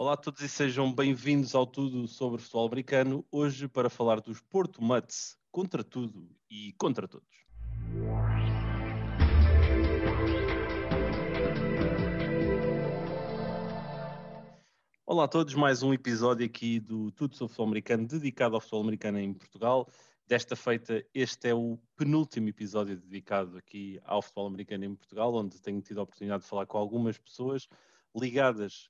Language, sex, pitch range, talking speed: English, male, 105-130 Hz, 135 wpm